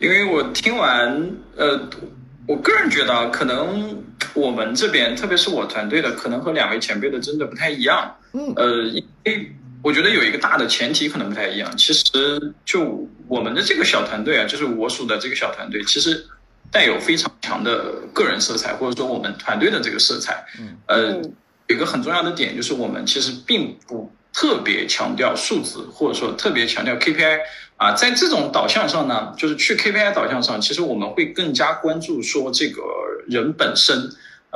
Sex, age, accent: male, 20-39, native